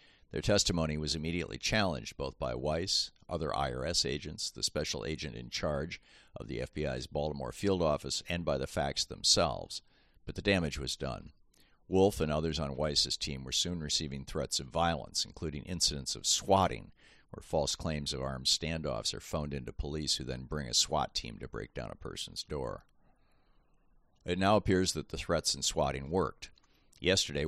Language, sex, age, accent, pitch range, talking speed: English, male, 50-69, American, 70-85 Hz, 175 wpm